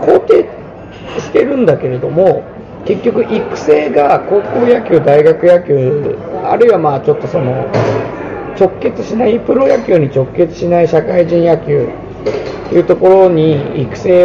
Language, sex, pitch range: Japanese, male, 150-240 Hz